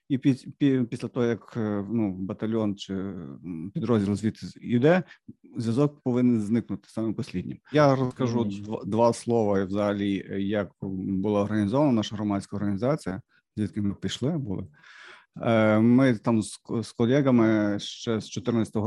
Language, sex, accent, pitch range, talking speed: Ukrainian, male, native, 105-125 Hz, 120 wpm